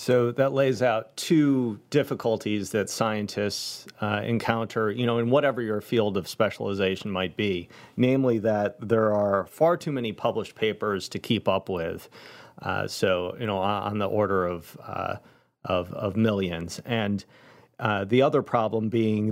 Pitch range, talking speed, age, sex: 100-120 Hz, 160 wpm, 40-59, male